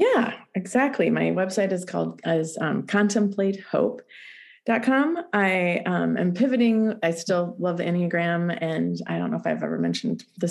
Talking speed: 155 wpm